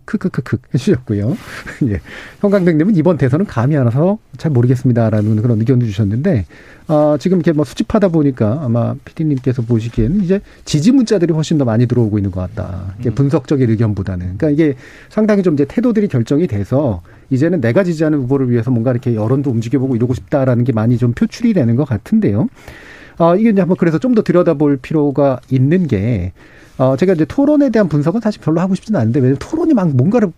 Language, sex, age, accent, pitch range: Korean, male, 40-59, native, 120-165 Hz